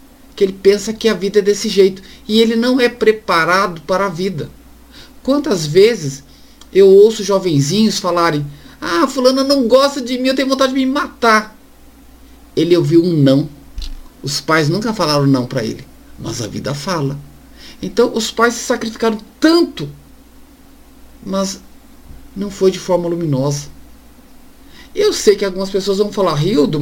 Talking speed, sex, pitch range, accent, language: 155 wpm, male, 180-265 Hz, Brazilian, Portuguese